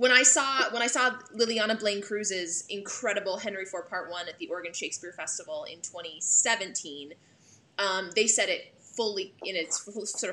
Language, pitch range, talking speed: English, 170-215 Hz, 175 wpm